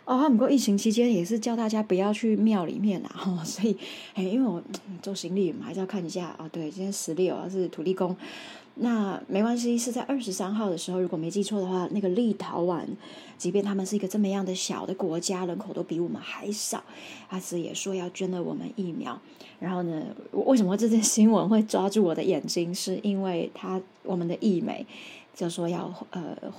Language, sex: Chinese, female